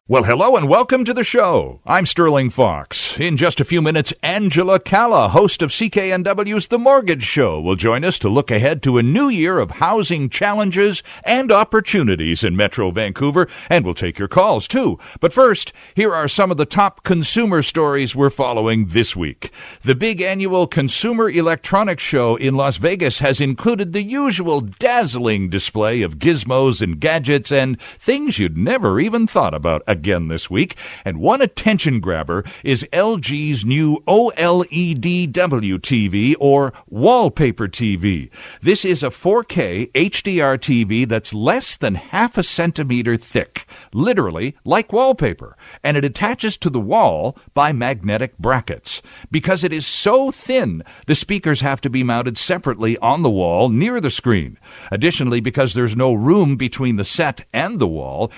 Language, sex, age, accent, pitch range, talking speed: English, male, 60-79, American, 120-185 Hz, 160 wpm